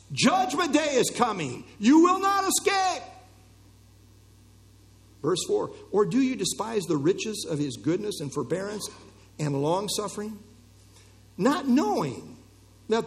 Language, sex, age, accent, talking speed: English, male, 50-69, American, 125 wpm